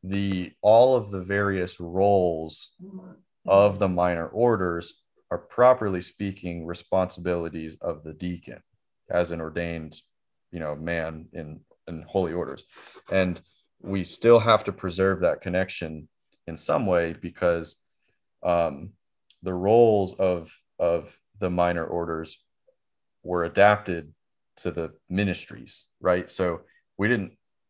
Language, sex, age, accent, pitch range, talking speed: English, male, 30-49, American, 85-100 Hz, 120 wpm